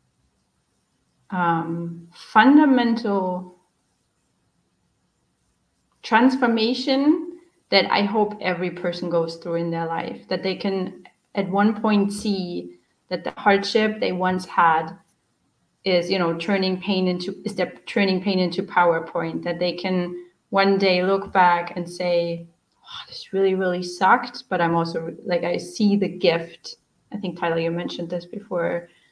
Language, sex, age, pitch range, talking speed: English, female, 30-49, 170-200 Hz, 135 wpm